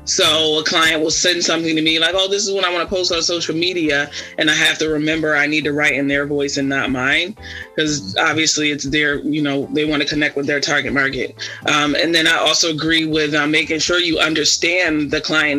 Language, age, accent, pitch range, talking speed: English, 20-39, American, 145-160 Hz, 245 wpm